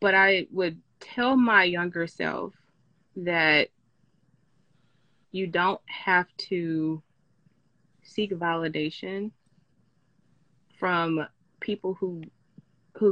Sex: female